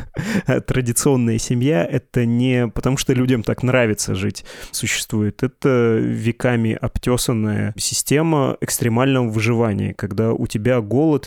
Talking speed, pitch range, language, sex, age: 110 wpm, 110-125 Hz, Russian, male, 20-39